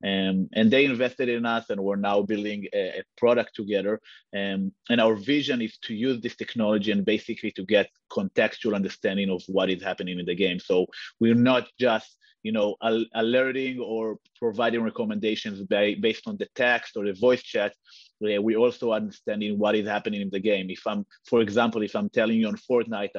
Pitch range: 105-125 Hz